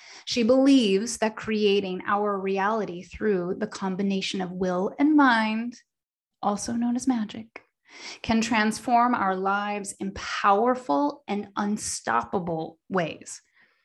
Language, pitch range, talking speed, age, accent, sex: English, 185-240 Hz, 115 wpm, 30-49, American, female